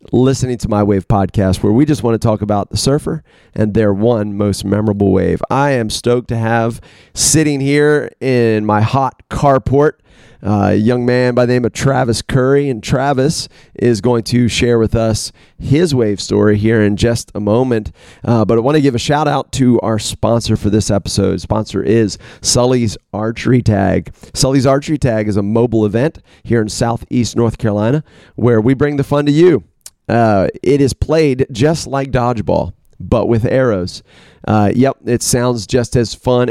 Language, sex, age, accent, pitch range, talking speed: English, male, 30-49, American, 105-135 Hz, 185 wpm